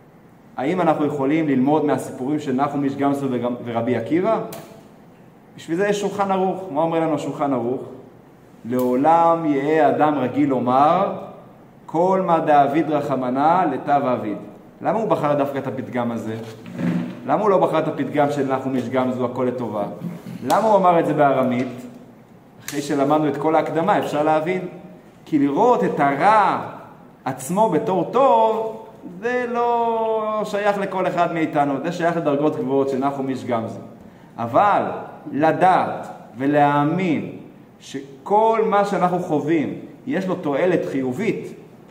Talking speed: 130 wpm